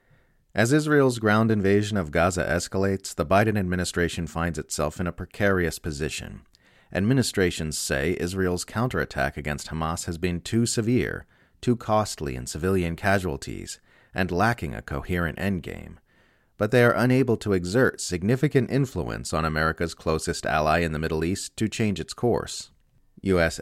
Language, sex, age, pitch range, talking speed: English, male, 30-49, 80-100 Hz, 145 wpm